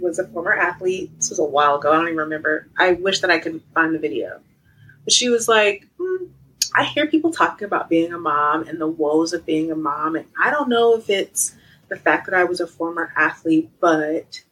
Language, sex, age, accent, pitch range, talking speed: English, female, 30-49, American, 180-295 Hz, 230 wpm